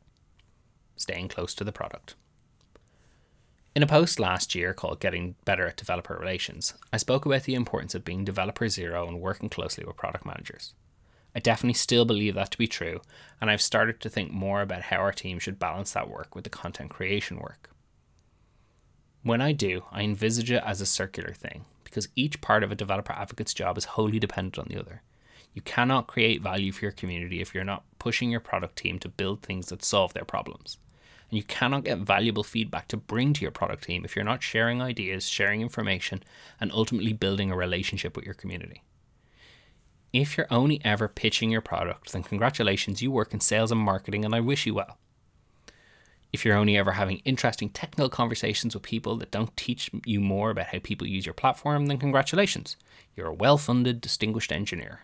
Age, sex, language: 20-39, male, English